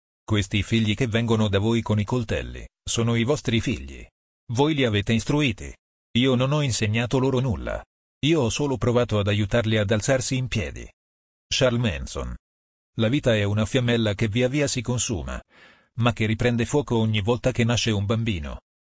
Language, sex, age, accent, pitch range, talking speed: Italian, male, 40-59, native, 100-125 Hz, 175 wpm